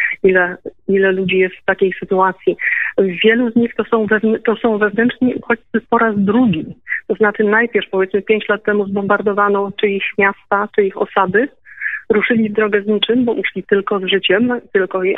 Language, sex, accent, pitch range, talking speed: Polish, female, native, 200-230 Hz, 180 wpm